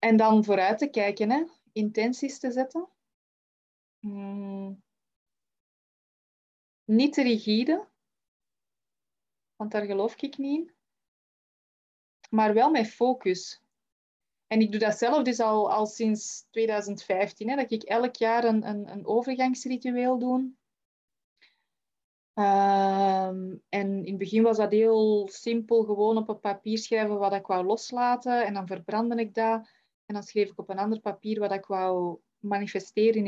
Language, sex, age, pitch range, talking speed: Dutch, female, 20-39, 195-235 Hz, 140 wpm